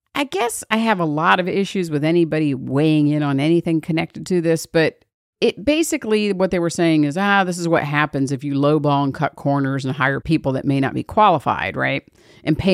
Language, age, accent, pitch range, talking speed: English, 50-69, American, 145-210 Hz, 220 wpm